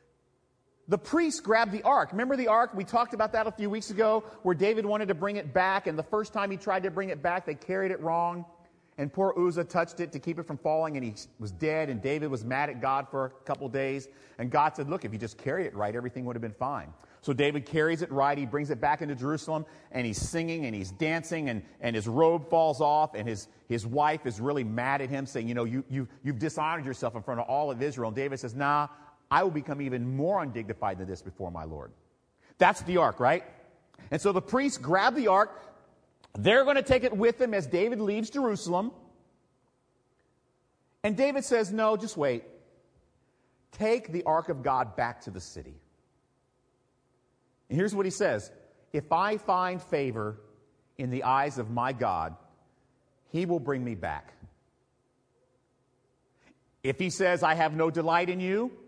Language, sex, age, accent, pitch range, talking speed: English, male, 40-59, American, 125-185 Hz, 205 wpm